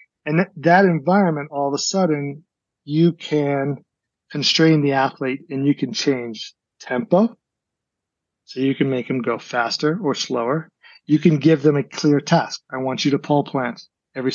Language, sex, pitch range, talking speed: English, male, 135-165 Hz, 170 wpm